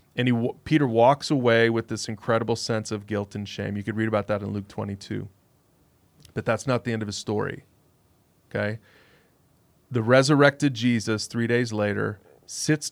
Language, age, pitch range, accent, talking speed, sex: English, 30-49, 110-130 Hz, American, 170 wpm, male